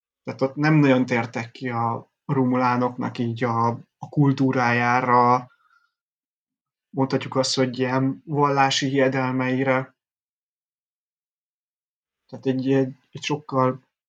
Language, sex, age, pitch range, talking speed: Hungarian, male, 30-49, 125-145 Hz, 100 wpm